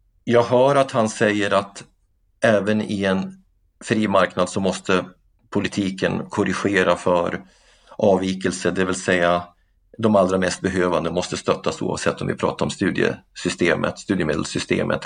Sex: male